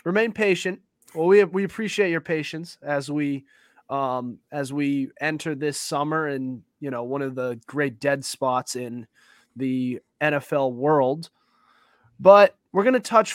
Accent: American